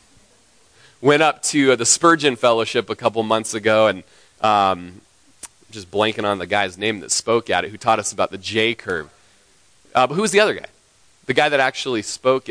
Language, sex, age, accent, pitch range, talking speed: English, male, 30-49, American, 105-145 Hz, 195 wpm